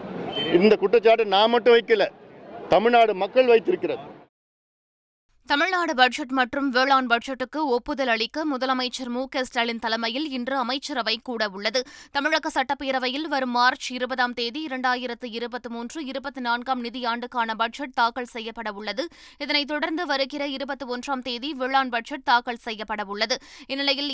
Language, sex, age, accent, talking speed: Tamil, female, 20-39, native, 115 wpm